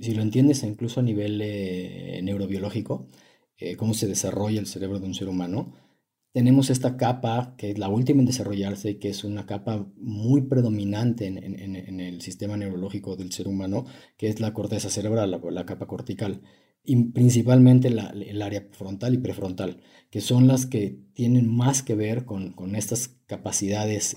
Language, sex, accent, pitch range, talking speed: Spanish, male, Mexican, 95-125 Hz, 175 wpm